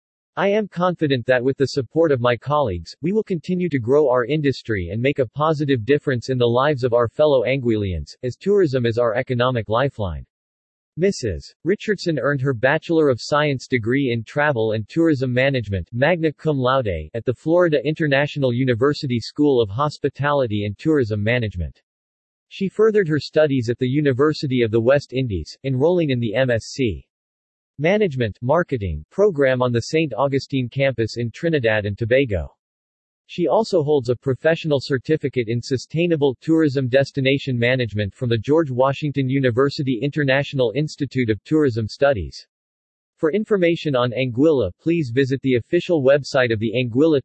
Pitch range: 115-150 Hz